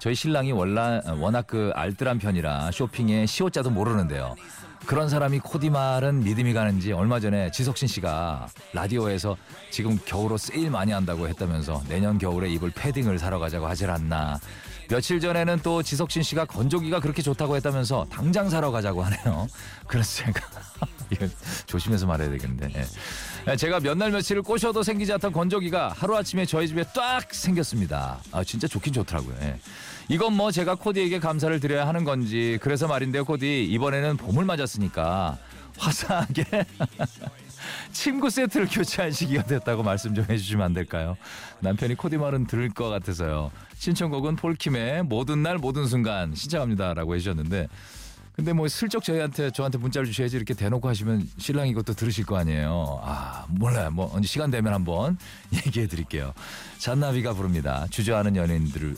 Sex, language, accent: male, Korean, native